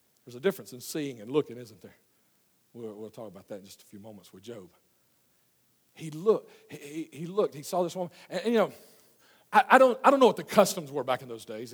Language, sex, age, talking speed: English, male, 50-69, 245 wpm